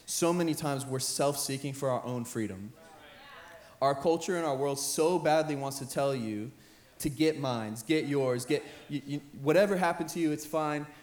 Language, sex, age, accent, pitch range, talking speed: English, male, 20-39, American, 125-155 Hz, 175 wpm